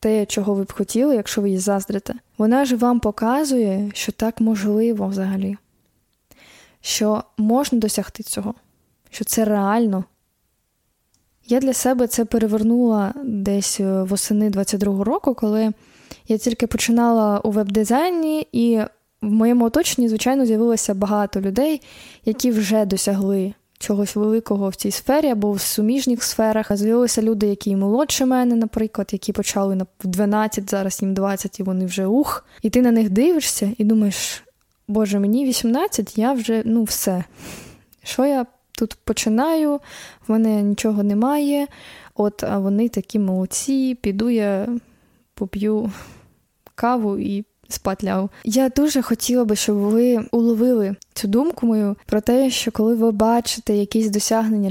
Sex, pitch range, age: female, 205-245 Hz, 20-39